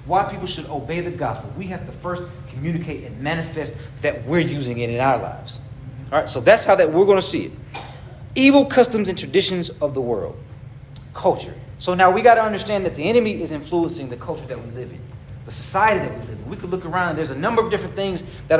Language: English